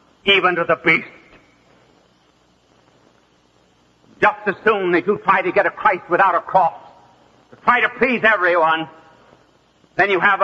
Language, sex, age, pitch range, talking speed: English, male, 60-79, 150-220 Hz, 145 wpm